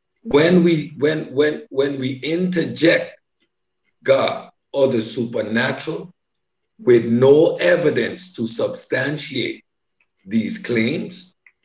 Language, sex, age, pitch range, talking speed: English, male, 60-79, 135-205 Hz, 95 wpm